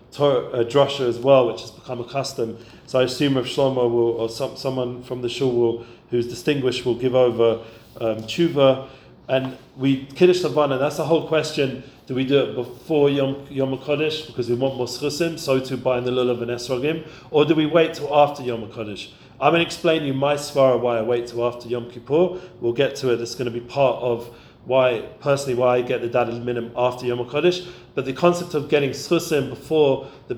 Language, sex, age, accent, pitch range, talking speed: English, male, 40-59, British, 120-145 Hz, 215 wpm